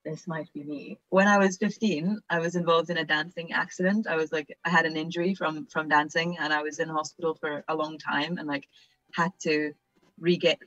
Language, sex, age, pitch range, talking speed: English, female, 20-39, 150-175 Hz, 220 wpm